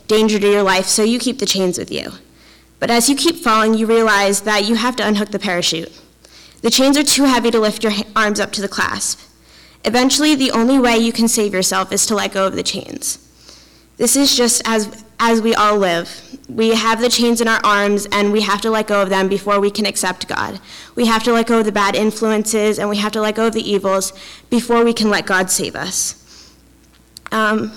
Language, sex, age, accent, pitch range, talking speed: English, female, 10-29, American, 200-235 Hz, 230 wpm